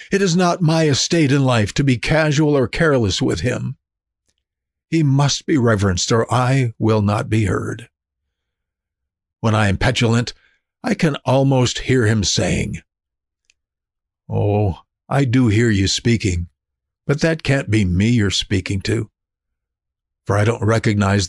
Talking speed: 145 wpm